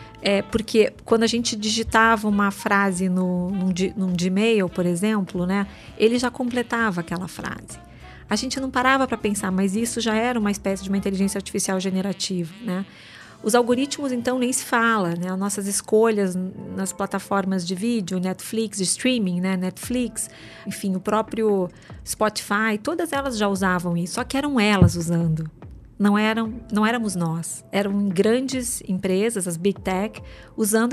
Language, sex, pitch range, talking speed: English, female, 190-225 Hz, 155 wpm